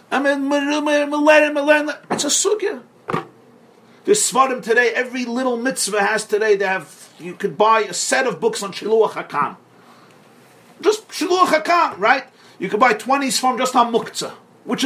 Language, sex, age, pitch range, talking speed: English, male, 40-59, 160-245 Hz, 160 wpm